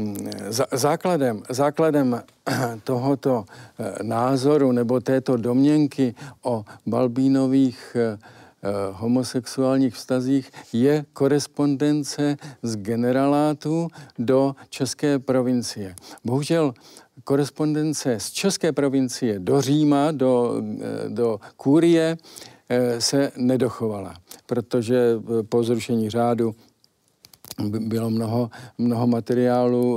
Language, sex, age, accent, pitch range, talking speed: Czech, male, 50-69, native, 120-155 Hz, 75 wpm